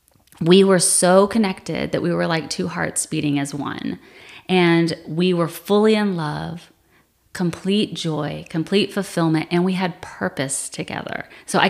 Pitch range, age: 160-195 Hz, 30-49